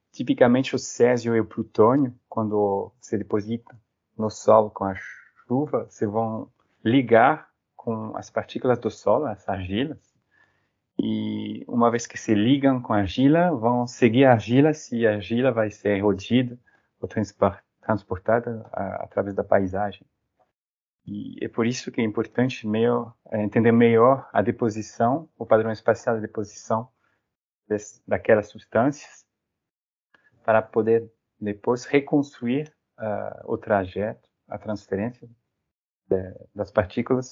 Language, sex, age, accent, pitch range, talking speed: Portuguese, male, 20-39, Brazilian, 105-125 Hz, 125 wpm